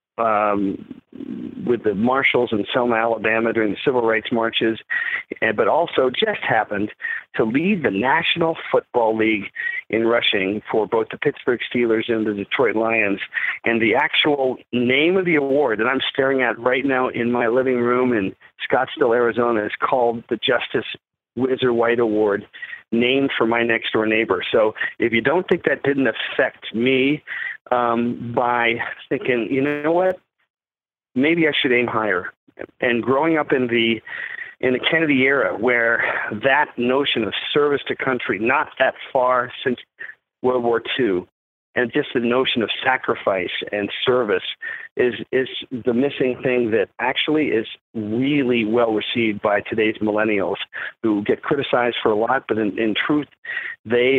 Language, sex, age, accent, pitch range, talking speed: English, male, 50-69, American, 115-140 Hz, 155 wpm